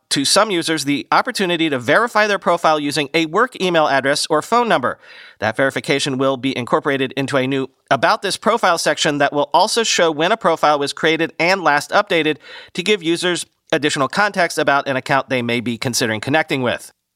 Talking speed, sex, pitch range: 190 wpm, male, 125-170 Hz